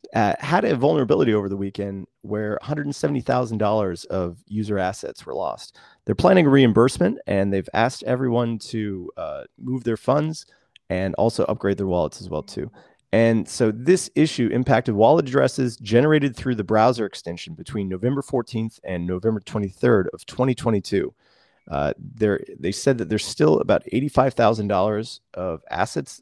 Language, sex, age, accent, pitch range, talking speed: English, male, 30-49, American, 100-130 Hz, 150 wpm